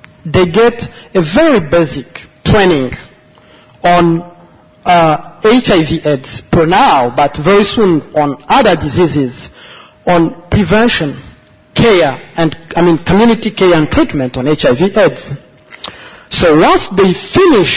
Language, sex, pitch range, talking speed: English, male, 155-205 Hz, 120 wpm